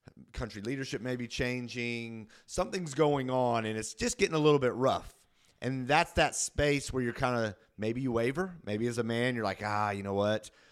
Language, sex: English, male